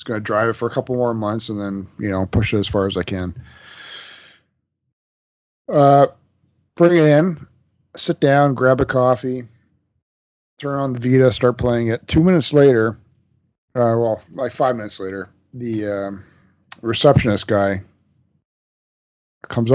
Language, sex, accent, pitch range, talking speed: English, male, American, 105-130 Hz, 155 wpm